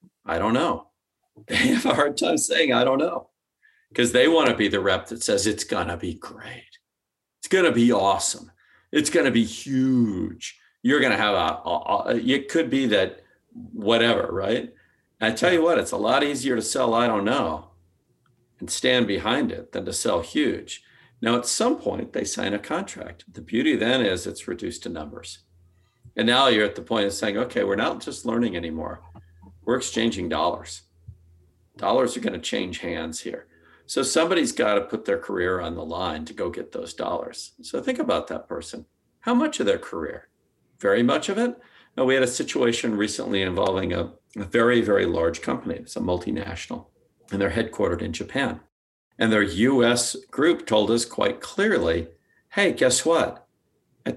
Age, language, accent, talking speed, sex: 50-69, English, American, 190 wpm, male